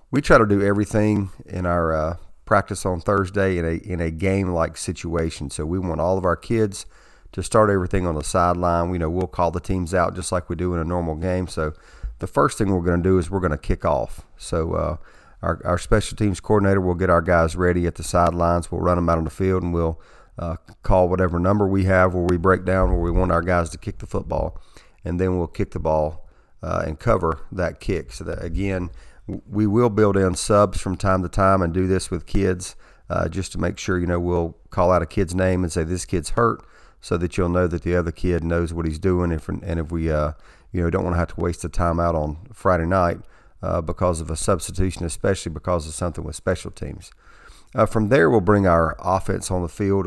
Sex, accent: male, American